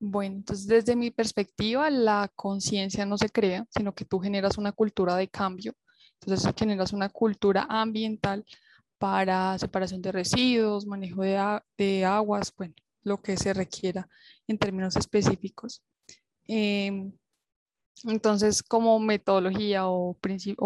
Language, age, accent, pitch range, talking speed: Spanish, 20-39, Colombian, 195-215 Hz, 130 wpm